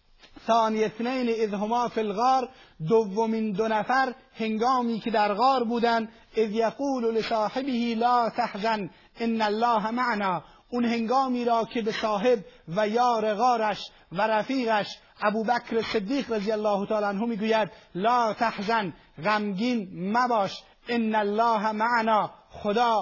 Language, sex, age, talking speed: Persian, male, 30-49, 125 wpm